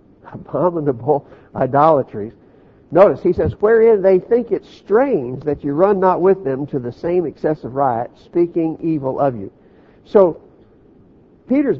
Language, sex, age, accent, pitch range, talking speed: English, male, 60-79, American, 135-195 Hz, 135 wpm